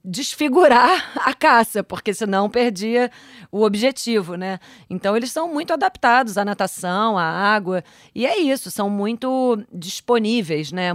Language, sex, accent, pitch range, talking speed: Portuguese, female, Brazilian, 170-215 Hz, 135 wpm